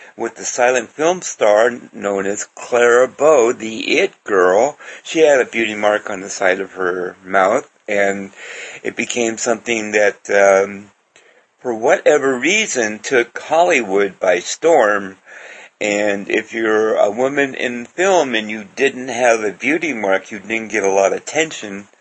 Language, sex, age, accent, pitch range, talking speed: English, male, 60-79, American, 100-140 Hz, 155 wpm